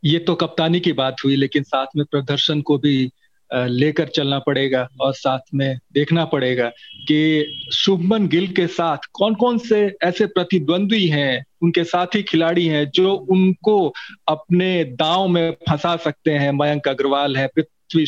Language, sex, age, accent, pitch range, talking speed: Hindi, male, 40-59, native, 145-180 Hz, 165 wpm